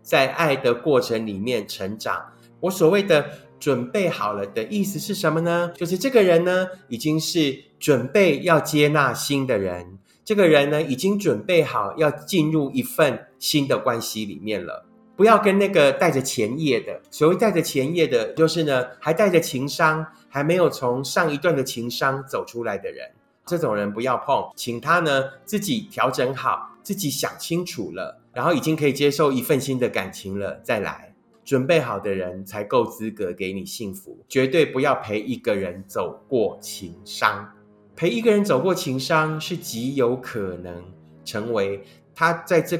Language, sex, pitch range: Chinese, male, 110-170 Hz